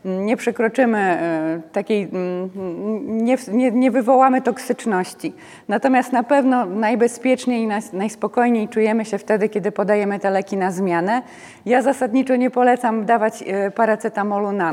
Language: Polish